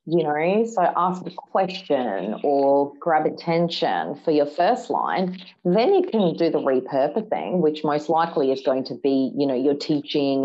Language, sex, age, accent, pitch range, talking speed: English, female, 30-49, Australian, 135-180 Hz, 170 wpm